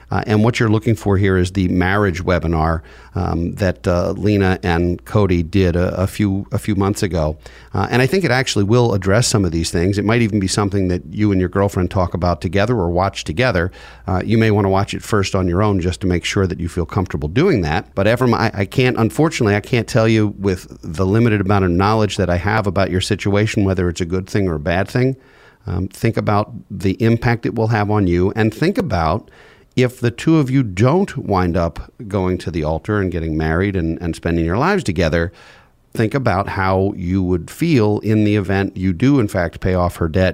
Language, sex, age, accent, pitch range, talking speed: English, male, 40-59, American, 90-110 Hz, 230 wpm